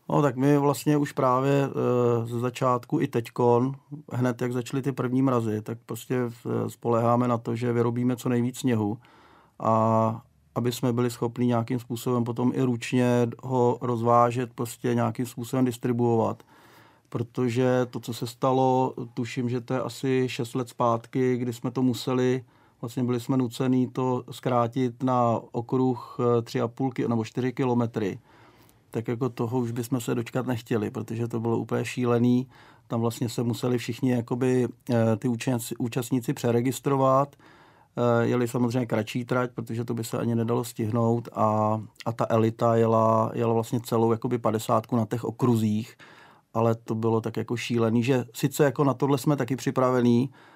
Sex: male